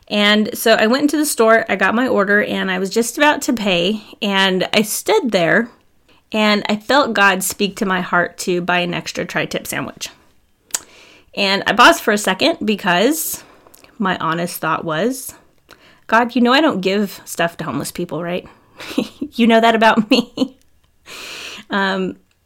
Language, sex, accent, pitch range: English, female, American, 190-250 Hz